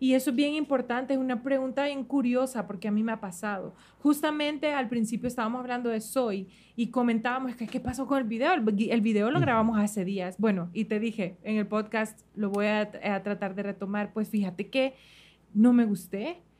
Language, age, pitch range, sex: Spanish, 30-49, 215-265 Hz, female